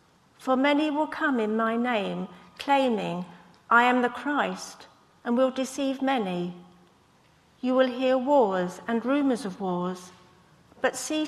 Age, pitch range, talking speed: 50-69, 190-255 Hz, 140 wpm